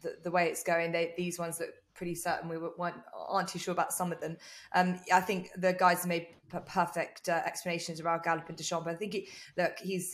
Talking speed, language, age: 235 wpm, English, 20-39